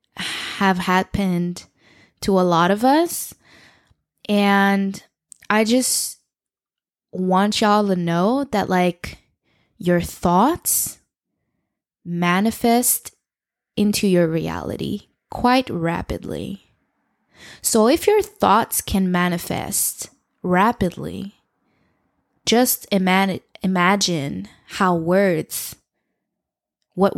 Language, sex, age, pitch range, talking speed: English, female, 20-39, 180-205 Hz, 80 wpm